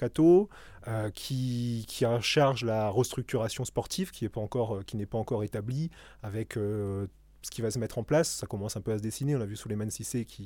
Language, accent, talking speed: French, French, 230 wpm